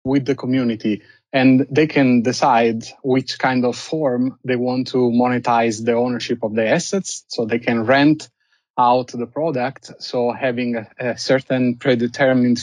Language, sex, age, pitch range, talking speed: English, male, 30-49, 120-130 Hz, 155 wpm